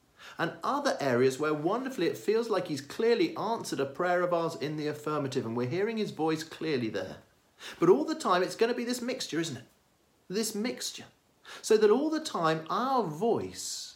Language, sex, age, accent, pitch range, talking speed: English, male, 50-69, British, 130-215 Hz, 200 wpm